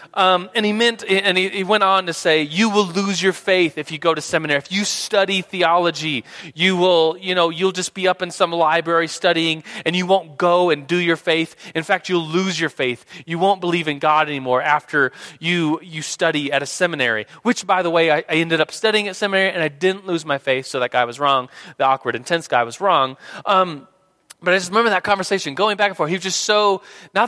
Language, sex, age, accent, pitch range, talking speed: English, male, 30-49, American, 150-195 Hz, 240 wpm